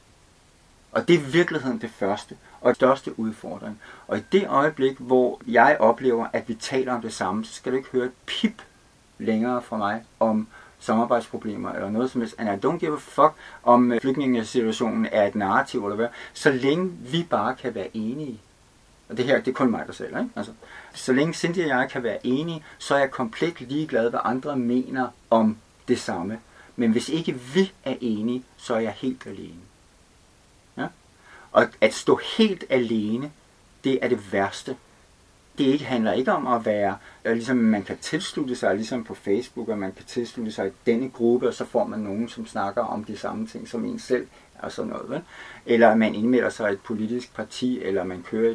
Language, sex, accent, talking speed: English, male, Danish, 195 wpm